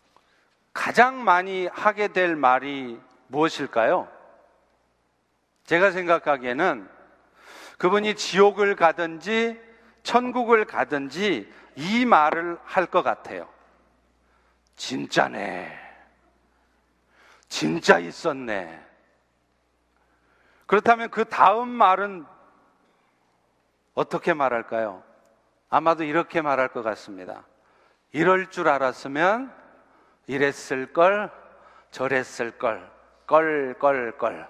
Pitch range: 130-185 Hz